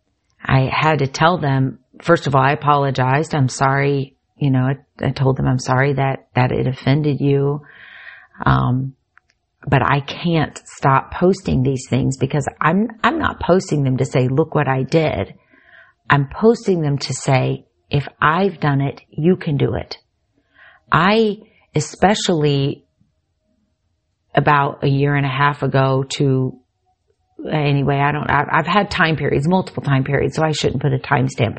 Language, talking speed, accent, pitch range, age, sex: English, 160 wpm, American, 135-160 Hz, 40-59, female